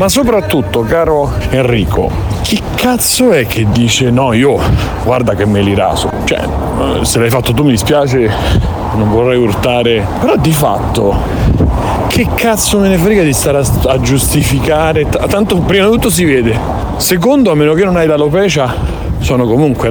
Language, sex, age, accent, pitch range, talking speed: Italian, male, 40-59, native, 120-160 Hz, 160 wpm